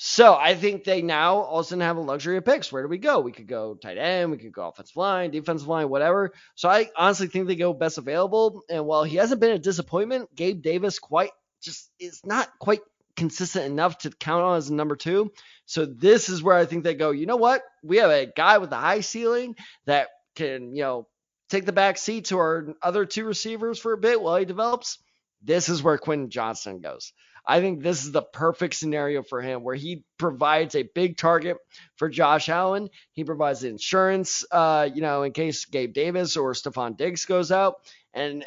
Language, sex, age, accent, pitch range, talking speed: English, male, 20-39, American, 150-195 Hz, 215 wpm